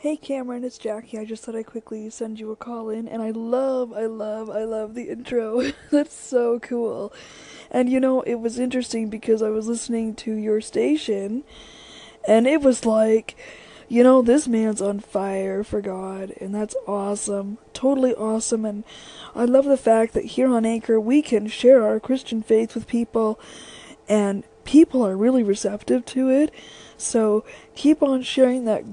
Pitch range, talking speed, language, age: 215-250 Hz, 175 wpm, English, 20-39